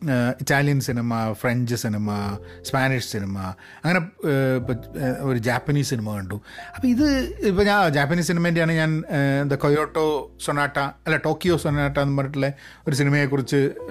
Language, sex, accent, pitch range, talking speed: Malayalam, male, native, 125-165 Hz, 125 wpm